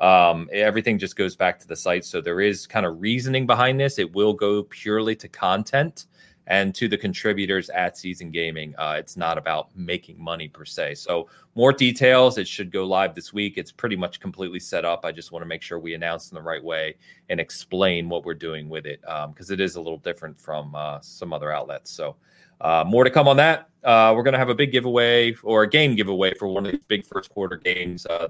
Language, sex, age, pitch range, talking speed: English, male, 30-49, 85-110 Hz, 235 wpm